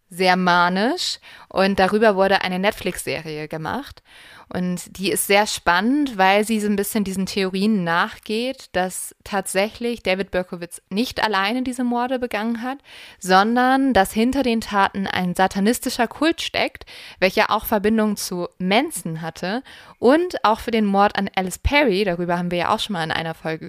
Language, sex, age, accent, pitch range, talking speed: German, female, 20-39, German, 175-215 Hz, 160 wpm